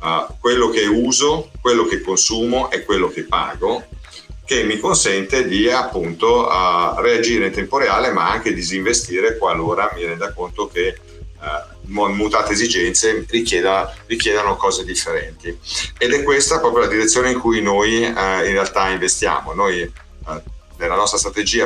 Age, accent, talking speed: 50-69, native, 150 wpm